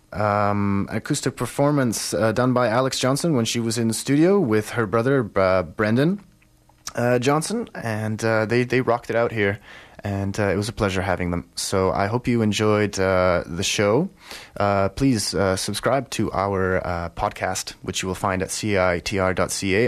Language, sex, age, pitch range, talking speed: English, male, 20-39, 95-130 Hz, 180 wpm